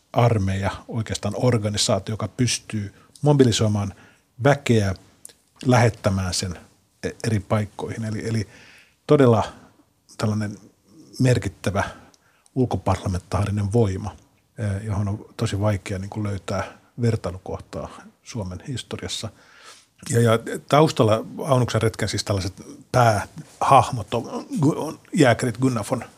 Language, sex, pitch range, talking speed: Finnish, male, 100-120 Hz, 90 wpm